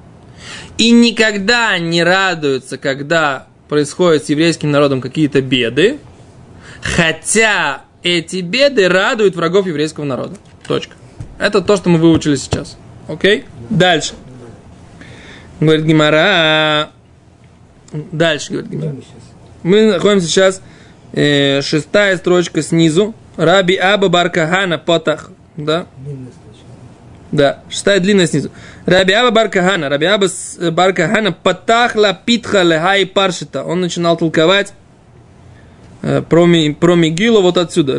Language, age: Russian, 20-39